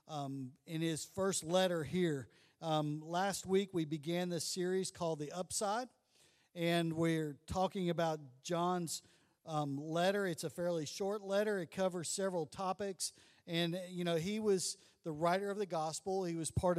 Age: 50-69